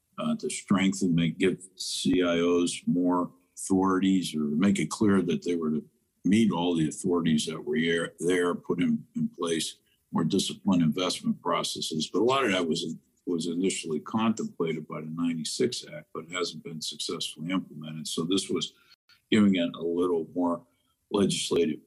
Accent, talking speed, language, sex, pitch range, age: American, 160 wpm, English, male, 85-100 Hz, 50-69